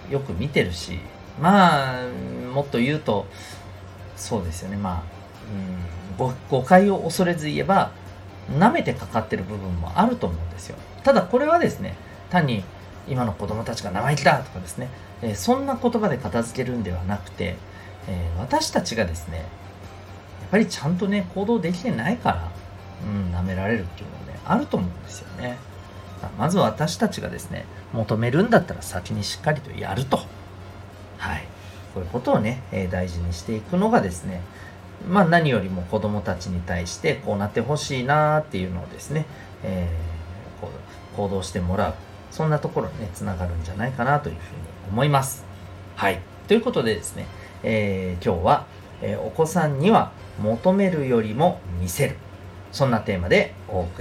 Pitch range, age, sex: 95-130 Hz, 40-59, male